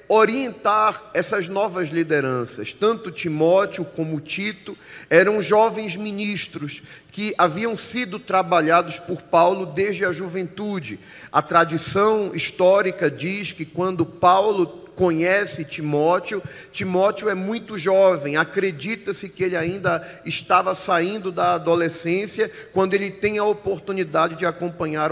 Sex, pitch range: male, 170-200 Hz